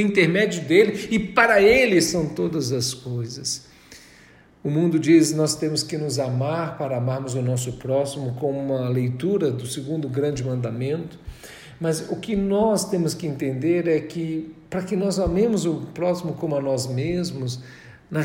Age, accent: 50-69, Brazilian